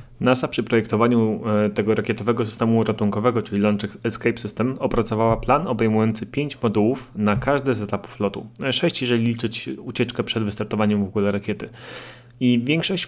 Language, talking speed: Polish, 145 wpm